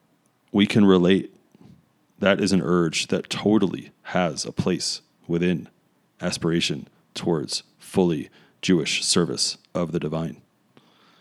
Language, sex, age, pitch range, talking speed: English, male, 30-49, 80-90 Hz, 110 wpm